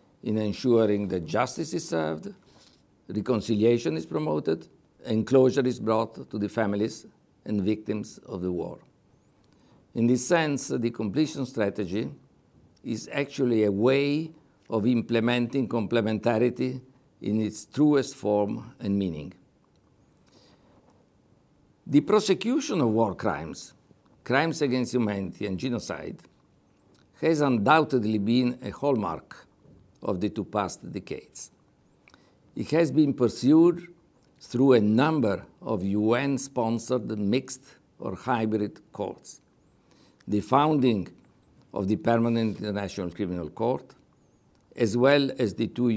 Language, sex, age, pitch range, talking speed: English, male, 60-79, 105-135 Hz, 110 wpm